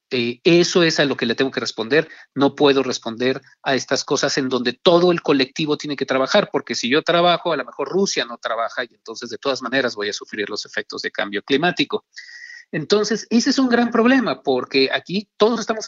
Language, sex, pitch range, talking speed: Spanish, male, 140-210 Hz, 215 wpm